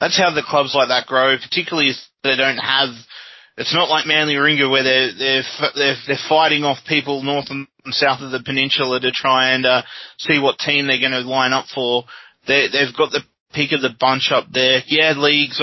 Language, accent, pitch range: English, Australian, 125-145 Hz